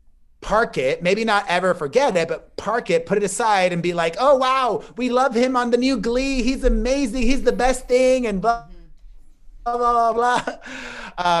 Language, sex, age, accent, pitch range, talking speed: English, male, 30-49, American, 175-235 Hz, 195 wpm